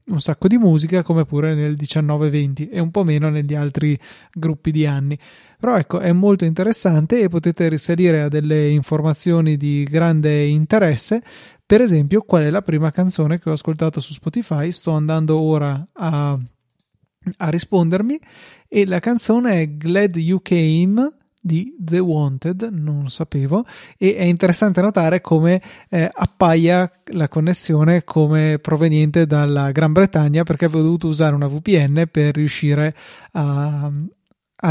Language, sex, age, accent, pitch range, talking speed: Italian, male, 30-49, native, 150-185 Hz, 150 wpm